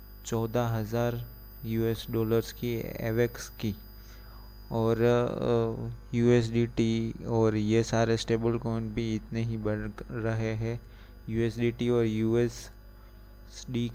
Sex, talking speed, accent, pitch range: male, 110 wpm, native, 110-120 Hz